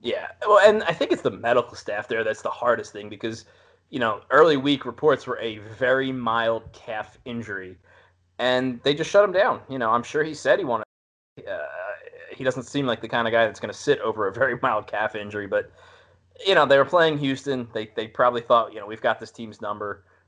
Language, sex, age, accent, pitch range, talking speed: English, male, 20-39, American, 95-125 Hz, 230 wpm